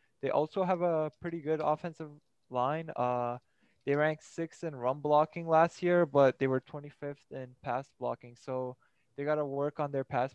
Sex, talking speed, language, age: male, 185 wpm, English, 20-39